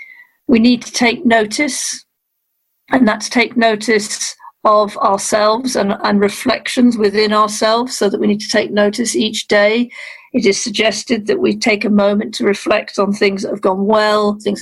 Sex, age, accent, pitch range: female, 50-69, British, 195-230 Hz